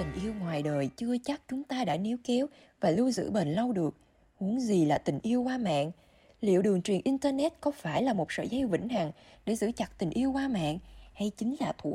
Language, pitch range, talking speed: Vietnamese, 175-250 Hz, 235 wpm